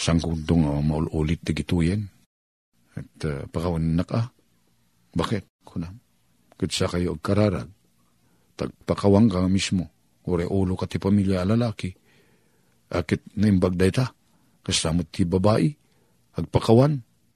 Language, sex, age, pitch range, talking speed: Filipino, male, 50-69, 95-150 Hz, 115 wpm